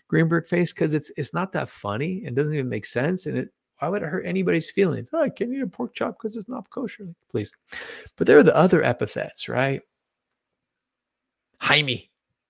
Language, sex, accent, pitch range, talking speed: English, male, American, 115-150 Hz, 195 wpm